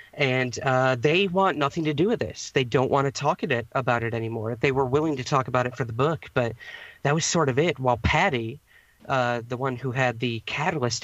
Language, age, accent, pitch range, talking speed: English, 40-59, American, 120-140 Hz, 230 wpm